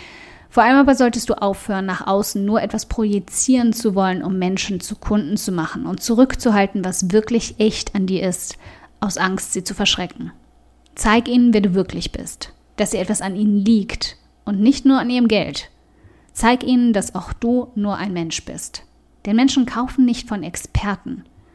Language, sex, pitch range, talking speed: German, female, 185-240 Hz, 180 wpm